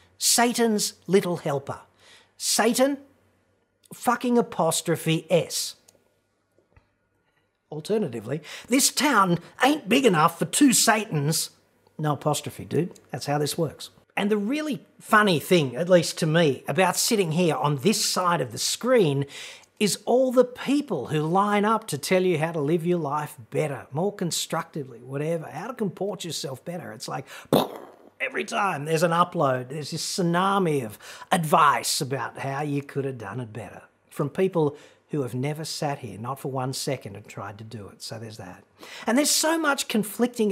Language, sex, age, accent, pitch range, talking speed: English, male, 40-59, Australian, 140-205 Hz, 160 wpm